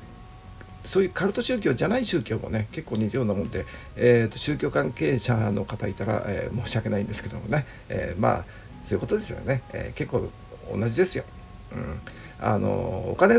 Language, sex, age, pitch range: Japanese, male, 60-79, 105-135 Hz